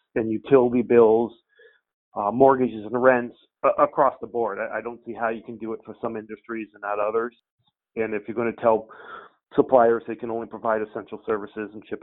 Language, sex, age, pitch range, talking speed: English, male, 40-59, 110-125 Hz, 205 wpm